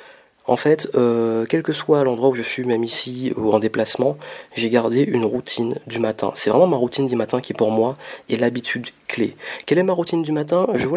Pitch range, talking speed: 115-145 Hz, 225 wpm